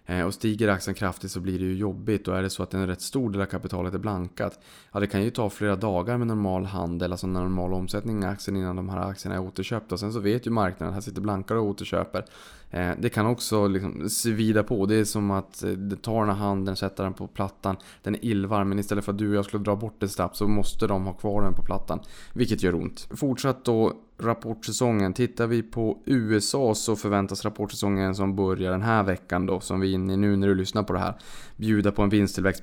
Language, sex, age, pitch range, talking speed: Swedish, male, 20-39, 90-105 Hz, 240 wpm